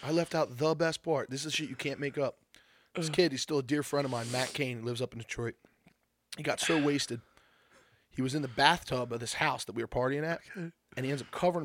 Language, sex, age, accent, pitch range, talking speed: English, male, 20-39, American, 130-175 Hz, 265 wpm